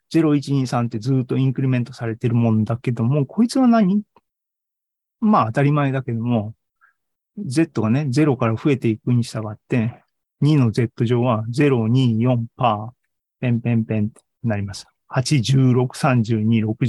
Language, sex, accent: Japanese, male, native